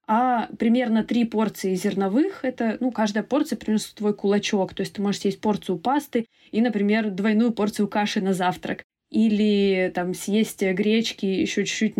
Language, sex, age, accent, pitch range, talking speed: Russian, female, 20-39, native, 200-240 Hz, 160 wpm